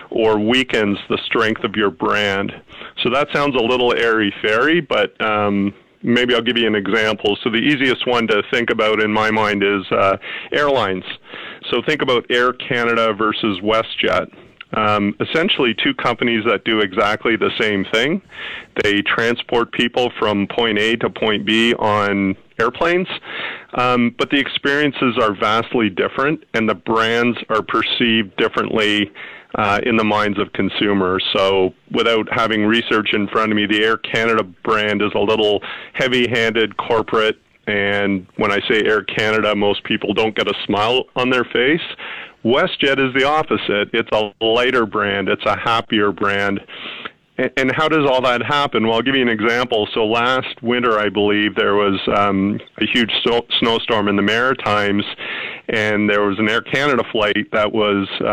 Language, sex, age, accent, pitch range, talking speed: English, male, 40-59, American, 105-120 Hz, 165 wpm